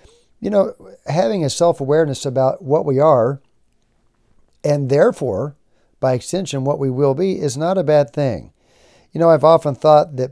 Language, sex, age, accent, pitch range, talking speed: English, male, 50-69, American, 130-150 Hz, 165 wpm